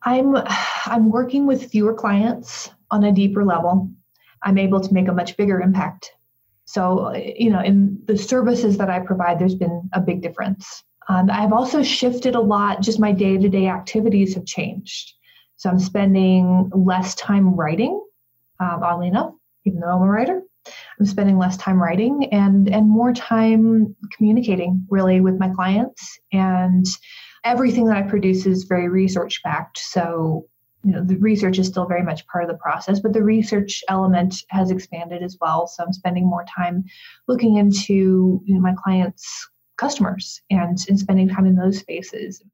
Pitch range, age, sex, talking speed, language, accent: 185-215 Hz, 30-49, female, 170 wpm, English, American